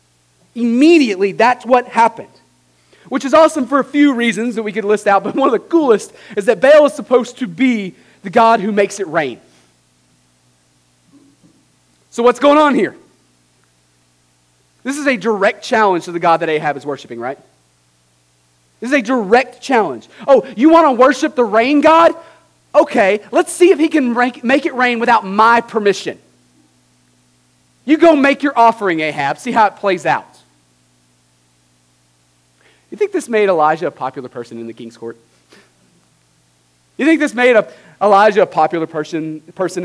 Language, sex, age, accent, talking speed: English, male, 30-49, American, 165 wpm